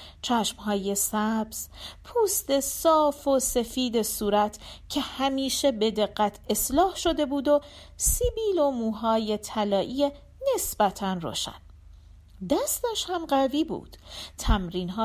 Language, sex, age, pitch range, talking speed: Persian, female, 40-59, 210-300 Hz, 105 wpm